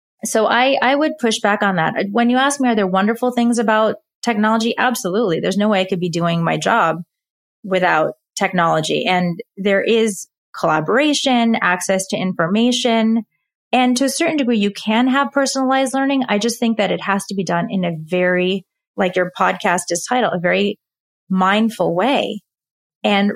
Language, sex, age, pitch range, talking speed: English, female, 20-39, 180-230 Hz, 175 wpm